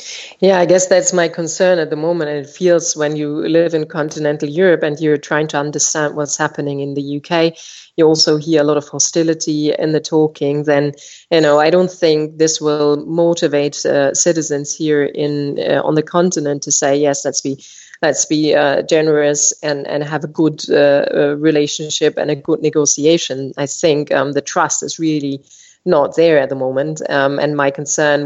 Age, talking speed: 30-49, 195 wpm